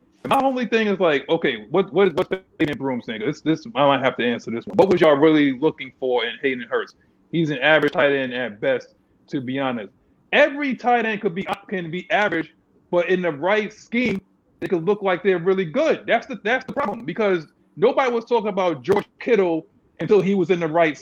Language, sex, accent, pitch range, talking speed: English, male, American, 165-215 Hz, 225 wpm